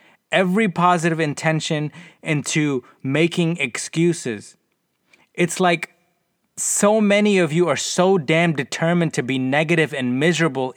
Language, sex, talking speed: English, male, 115 wpm